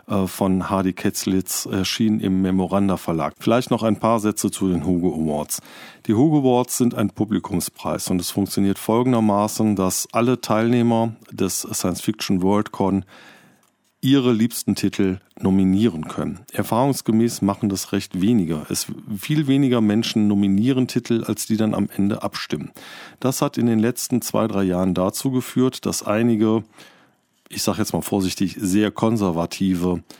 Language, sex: German, male